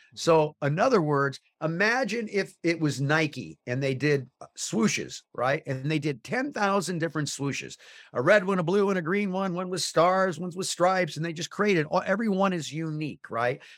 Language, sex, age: English, male, 50-69